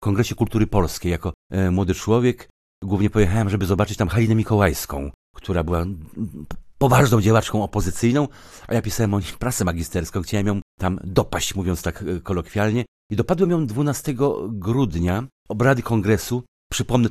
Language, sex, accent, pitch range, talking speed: Polish, male, native, 95-120 Hz, 145 wpm